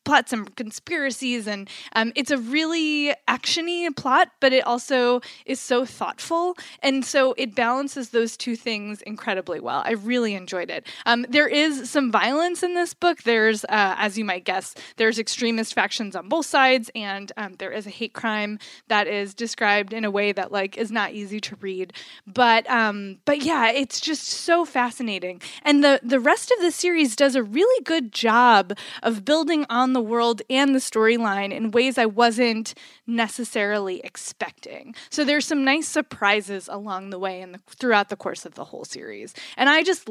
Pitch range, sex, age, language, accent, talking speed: 205-275 Hz, female, 20-39, English, American, 185 wpm